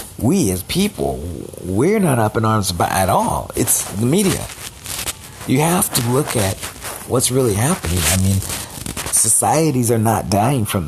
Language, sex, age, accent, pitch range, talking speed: English, male, 40-59, American, 100-130 Hz, 155 wpm